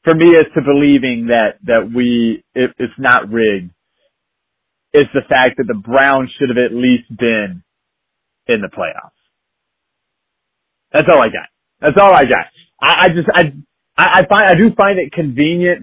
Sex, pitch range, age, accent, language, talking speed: male, 120-160 Hz, 30-49, American, English, 155 wpm